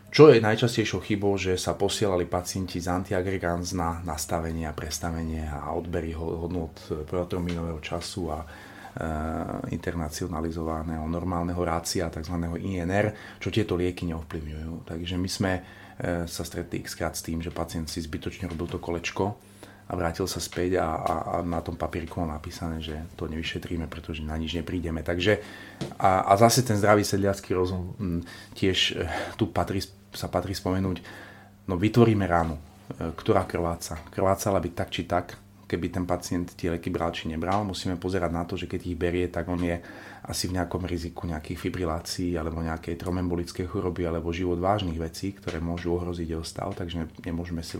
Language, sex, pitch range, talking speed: Slovak, male, 85-100 Hz, 165 wpm